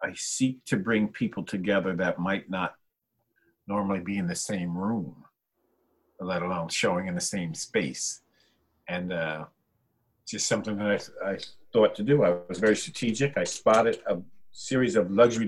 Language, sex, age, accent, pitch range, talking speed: English, male, 50-69, American, 95-115 Hz, 165 wpm